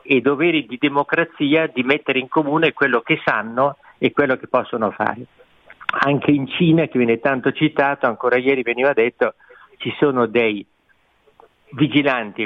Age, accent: 50-69, native